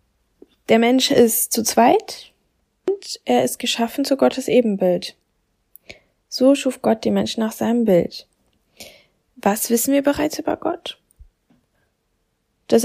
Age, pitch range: 10-29, 225-275 Hz